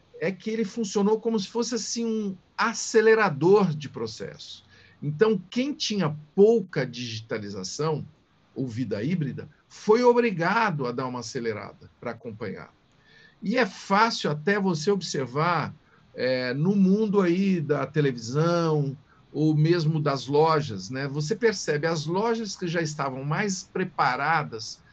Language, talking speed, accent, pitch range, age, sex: Portuguese, 125 wpm, Brazilian, 140-205 Hz, 50-69, male